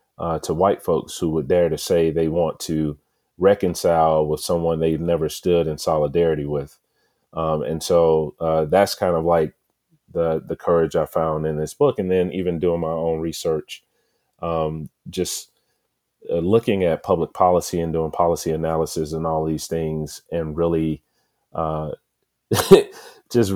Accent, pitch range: American, 80-90 Hz